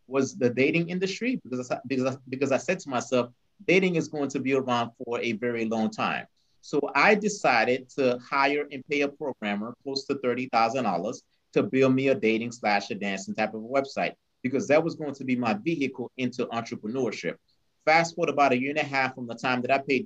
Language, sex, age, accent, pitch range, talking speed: English, male, 30-49, American, 120-150 Hz, 215 wpm